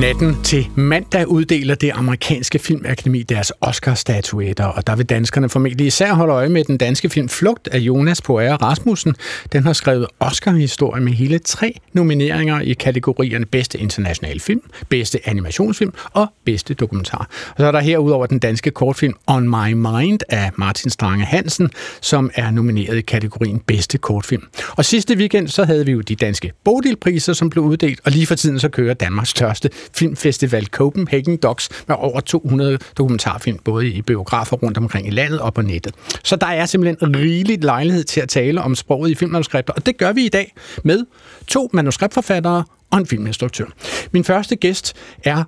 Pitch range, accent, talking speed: 115-160 Hz, native, 175 wpm